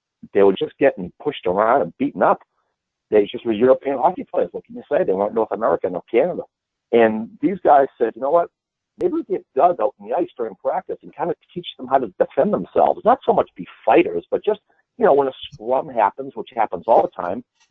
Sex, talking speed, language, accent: male, 235 wpm, English, American